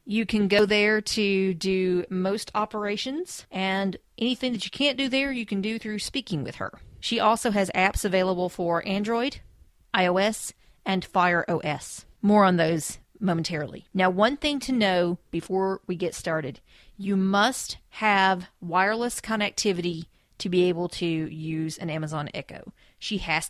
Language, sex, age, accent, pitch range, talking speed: English, female, 40-59, American, 180-215 Hz, 155 wpm